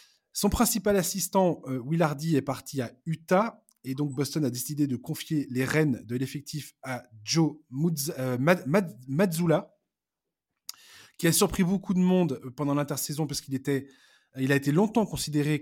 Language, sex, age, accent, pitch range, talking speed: French, male, 20-39, French, 130-170 Hz, 160 wpm